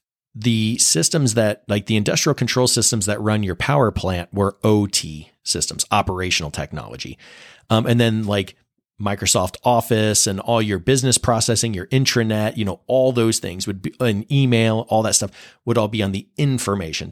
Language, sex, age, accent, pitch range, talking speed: English, male, 40-59, American, 100-120 Hz, 170 wpm